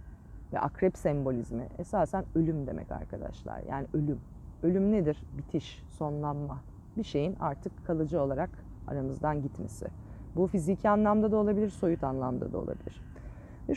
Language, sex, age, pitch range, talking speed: Turkish, female, 30-49, 135-195 Hz, 130 wpm